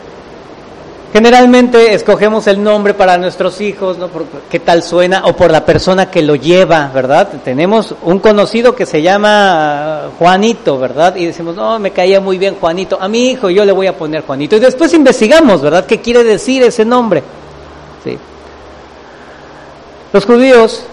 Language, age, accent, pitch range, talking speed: English, 40-59, Mexican, 170-225 Hz, 160 wpm